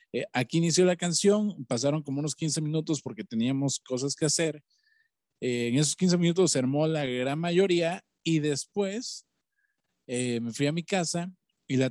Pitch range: 120-160 Hz